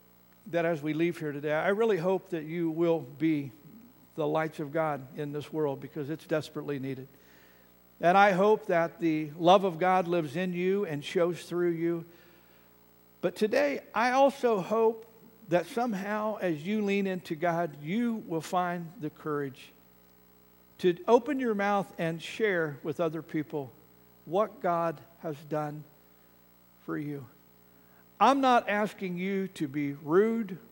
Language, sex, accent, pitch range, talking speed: English, male, American, 135-180 Hz, 150 wpm